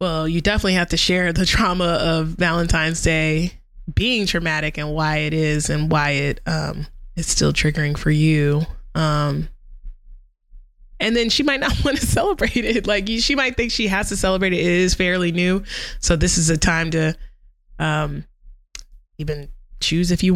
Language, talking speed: English, 175 wpm